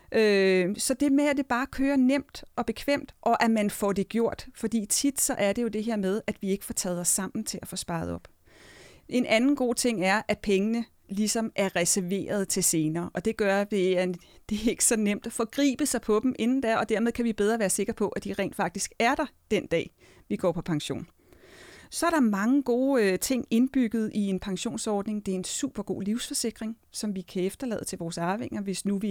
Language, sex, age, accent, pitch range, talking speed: Danish, female, 40-59, native, 190-235 Hz, 235 wpm